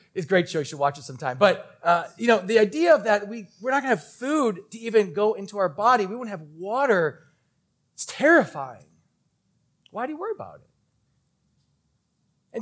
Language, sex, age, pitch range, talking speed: English, male, 30-49, 165-225 Hz, 205 wpm